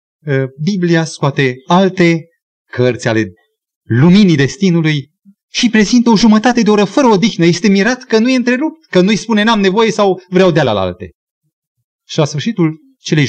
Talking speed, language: 155 wpm, Romanian